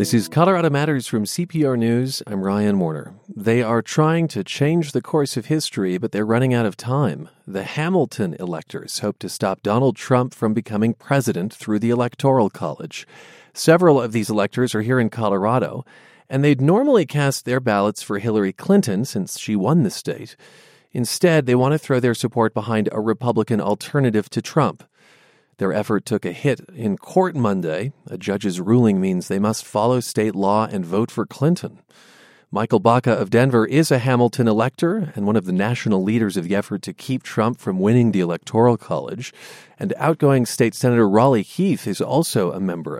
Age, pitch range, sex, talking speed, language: 40-59, 105-140 Hz, male, 185 wpm, English